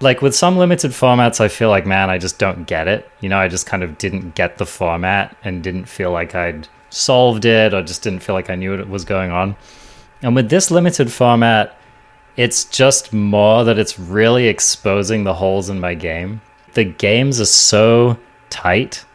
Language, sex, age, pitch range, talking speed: English, male, 30-49, 95-130 Hz, 200 wpm